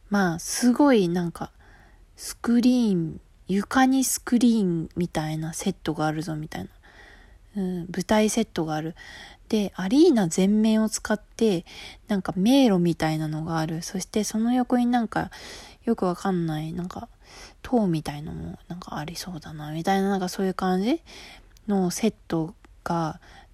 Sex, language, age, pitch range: female, Japanese, 20-39, 165-225 Hz